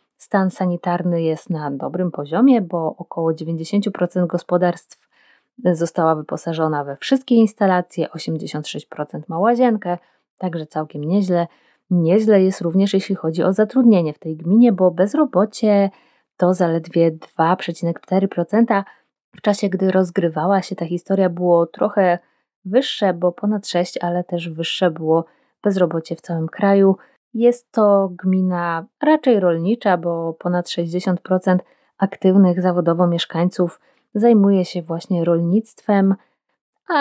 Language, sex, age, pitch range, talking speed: Polish, female, 20-39, 170-200 Hz, 120 wpm